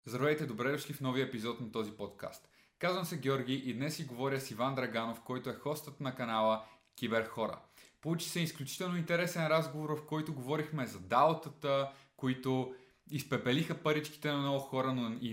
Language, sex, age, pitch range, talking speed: Bulgarian, male, 20-39, 120-150 Hz, 170 wpm